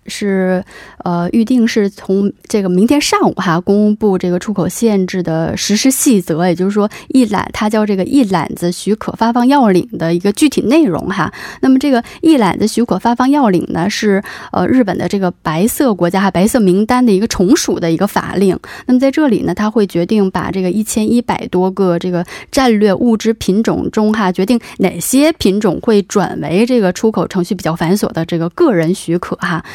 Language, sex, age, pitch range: Korean, female, 20-39, 180-230 Hz